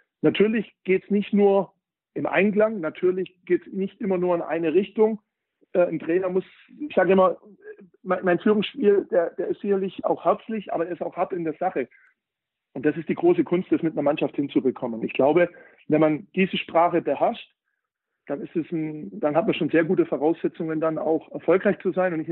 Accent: German